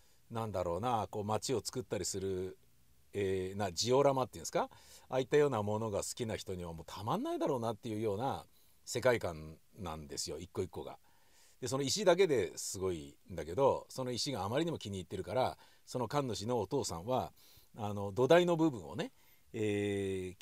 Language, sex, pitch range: Japanese, male, 100-145 Hz